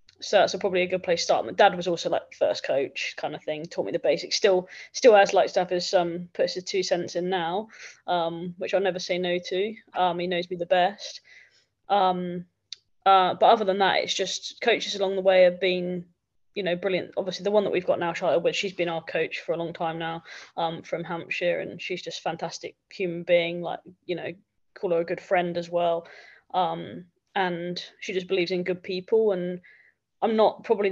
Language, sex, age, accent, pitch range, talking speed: English, female, 20-39, British, 175-200 Hz, 225 wpm